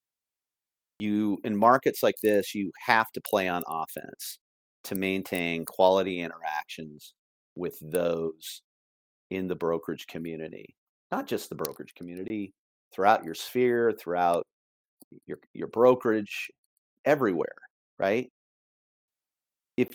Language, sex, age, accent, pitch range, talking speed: English, male, 40-59, American, 85-115 Hz, 110 wpm